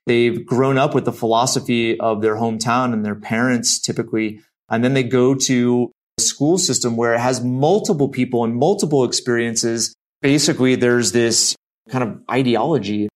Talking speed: 160 wpm